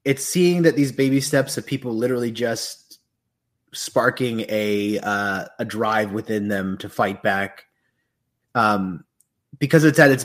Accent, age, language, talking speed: American, 20-39, English, 145 wpm